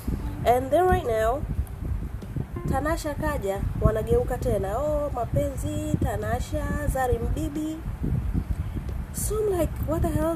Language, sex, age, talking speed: English, female, 30-49, 110 wpm